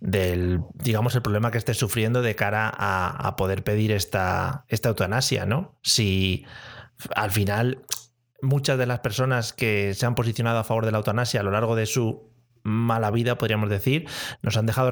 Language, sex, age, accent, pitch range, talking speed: Spanish, male, 30-49, Spanish, 100-120 Hz, 180 wpm